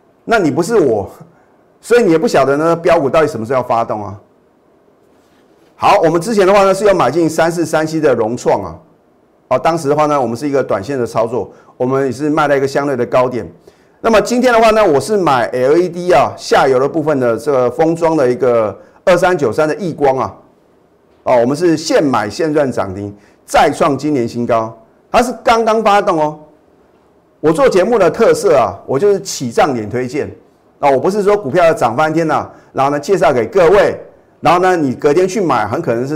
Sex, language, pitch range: male, Chinese, 130-180 Hz